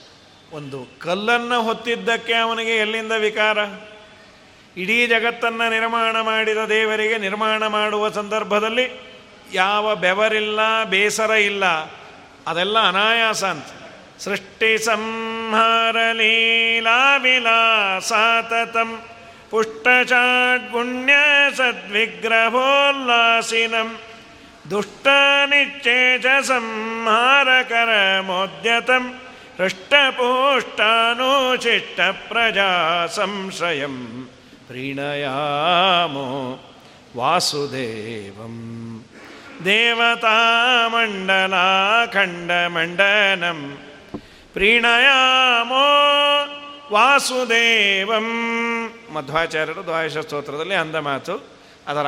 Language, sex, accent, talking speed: Kannada, male, native, 50 wpm